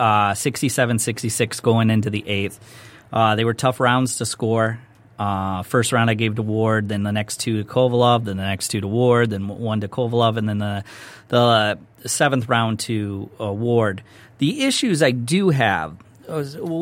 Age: 30-49